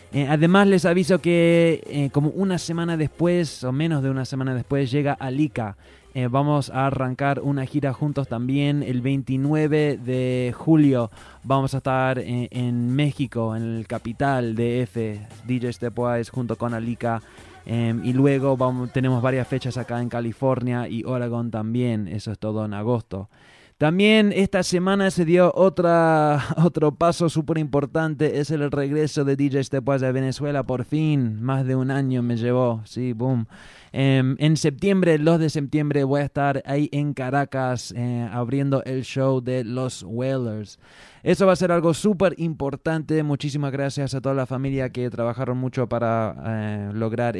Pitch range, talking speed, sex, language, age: 120-150 Hz, 160 wpm, male, English, 20-39